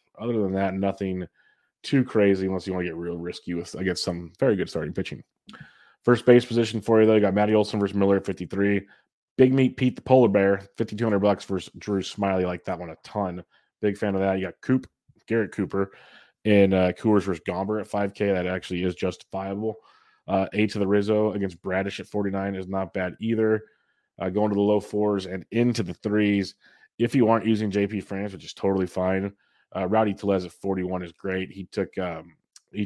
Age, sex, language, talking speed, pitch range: 20-39, male, English, 210 wpm, 95-110 Hz